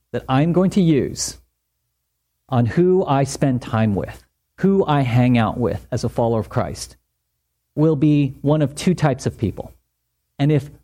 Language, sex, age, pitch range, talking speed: English, male, 40-59, 110-180 Hz, 170 wpm